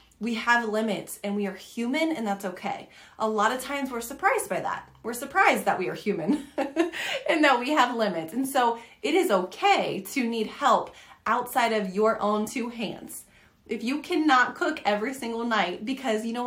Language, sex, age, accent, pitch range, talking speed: English, female, 30-49, American, 215-280 Hz, 195 wpm